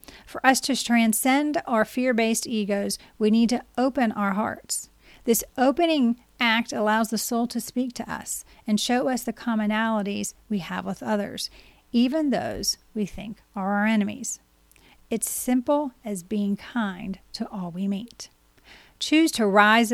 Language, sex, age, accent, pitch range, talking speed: English, female, 40-59, American, 200-240 Hz, 155 wpm